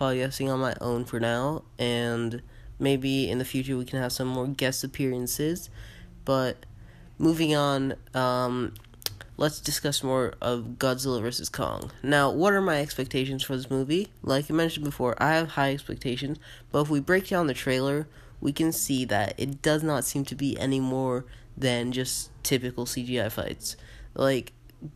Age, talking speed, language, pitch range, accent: 20-39, 170 wpm, English, 115-140 Hz, American